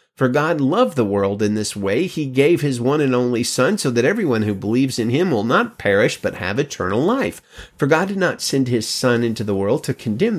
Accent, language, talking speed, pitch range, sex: American, English, 235 wpm, 110-140 Hz, male